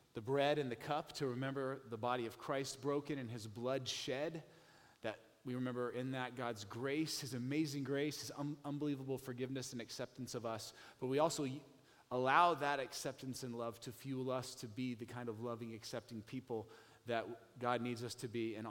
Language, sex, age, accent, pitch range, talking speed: English, male, 30-49, American, 120-145 Hz, 190 wpm